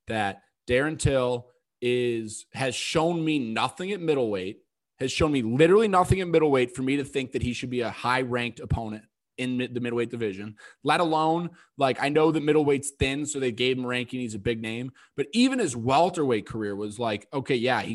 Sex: male